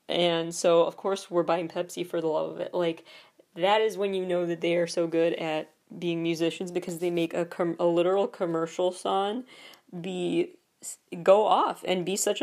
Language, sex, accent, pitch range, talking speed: English, female, American, 175-210 Hz, 200 wpm